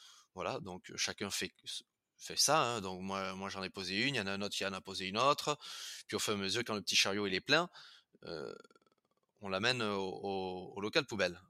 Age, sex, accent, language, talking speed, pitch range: 20-39, male, French, French, 250 wpm, 100-130 Hz